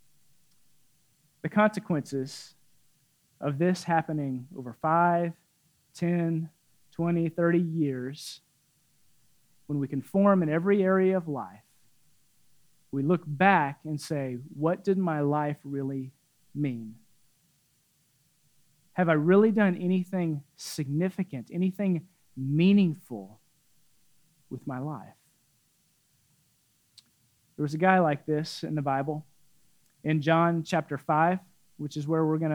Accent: American